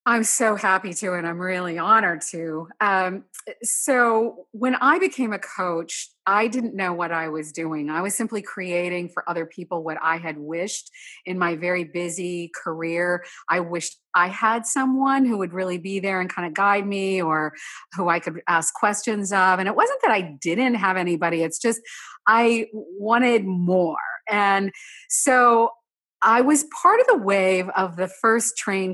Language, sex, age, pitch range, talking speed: English, female, 40-59, 175-220 Hz, 180 wpm